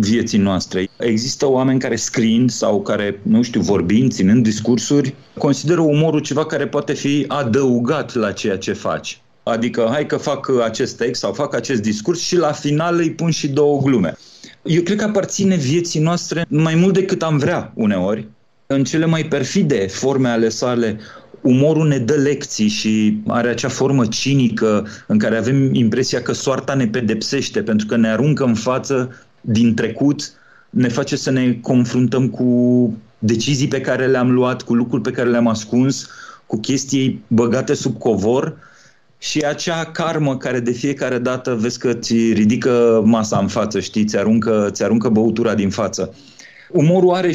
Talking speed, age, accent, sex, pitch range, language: 160 wpm, 40-59, native, male, 115-145 Hz, Romanian